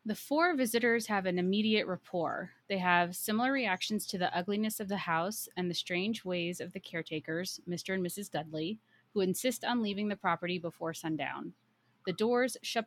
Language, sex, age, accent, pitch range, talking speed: English, female, 30-49, American, 165-200 Hz, 180 wpm